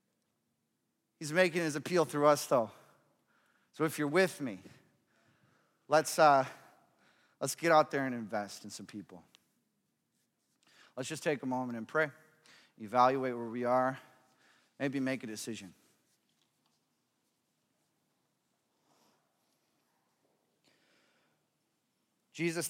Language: English